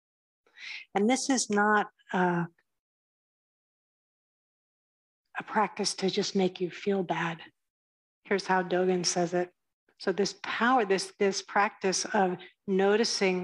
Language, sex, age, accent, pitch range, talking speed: English, female, 50-69, American, 180-215 Hz, 115 wpm